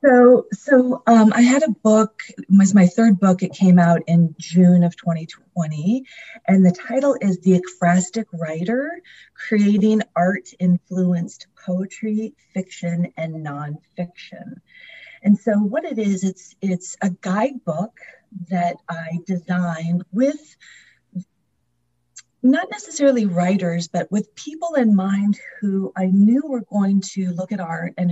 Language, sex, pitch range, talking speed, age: English, female, 170-215 Hz, 135 wpm, 40-59